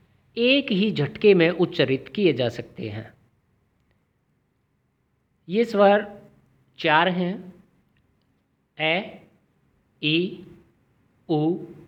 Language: Hindi